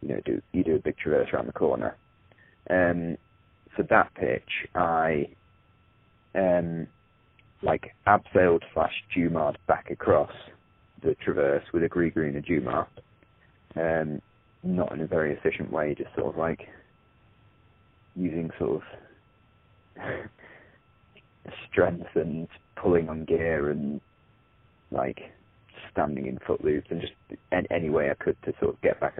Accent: British